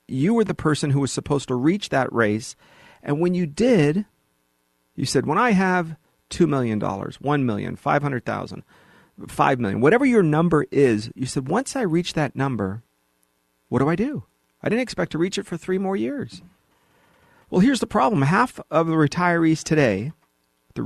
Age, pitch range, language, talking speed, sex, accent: 40-59, 120-175 Hz, English, 180 wpm, male, American